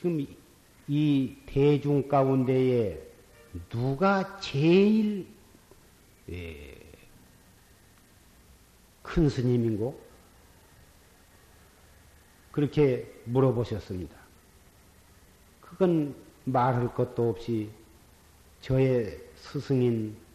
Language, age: Korean, 50-69